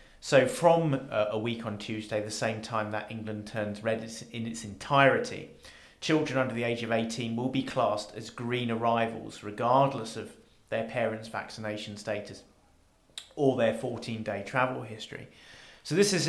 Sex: male